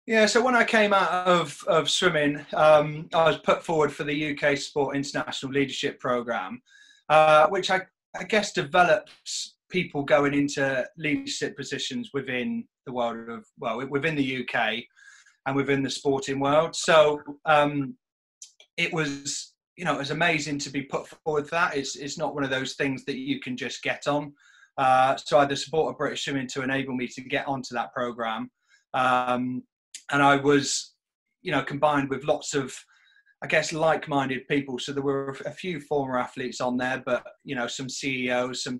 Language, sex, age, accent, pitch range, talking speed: English, male, 30-49, British, 130-155 Hz, 180 wpm